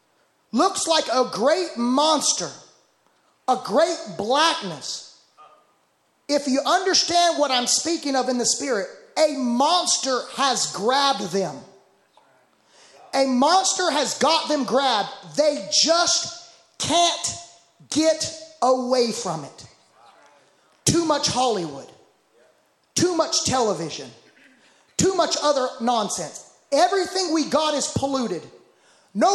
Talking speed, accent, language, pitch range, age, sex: 105 wpm, American, English, 235-315 Hz, 30-49, male